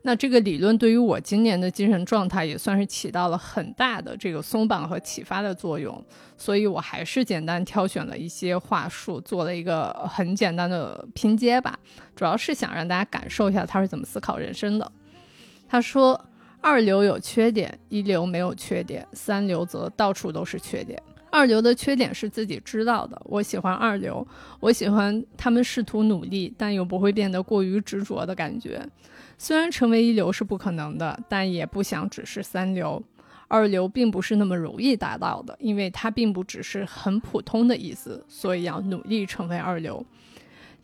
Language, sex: Chinese, female